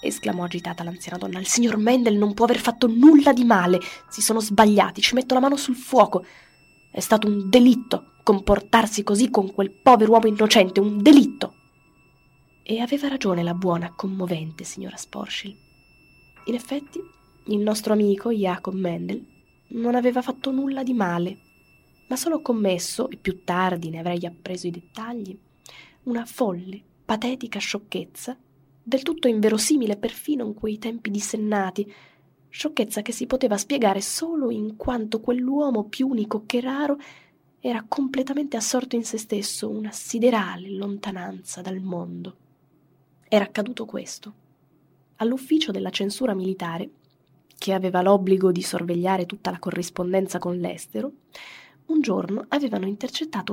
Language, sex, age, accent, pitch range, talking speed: Italian, female, 20-39, native, 185-250 Hz, 140 wpm